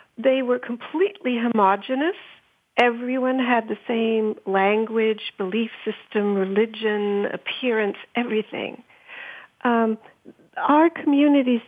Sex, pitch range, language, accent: female, 220-280 Hz, English, American